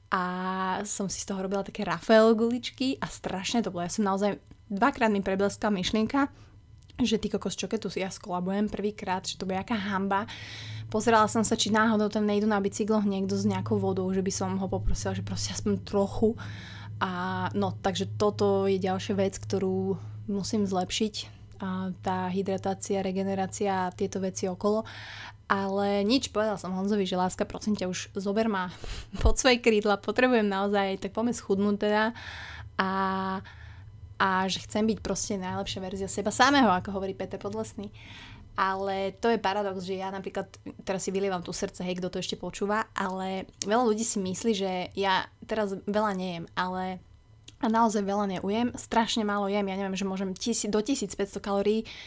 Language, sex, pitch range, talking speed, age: Slovak, female, 185-210 Hz, 170 wpm, 20-39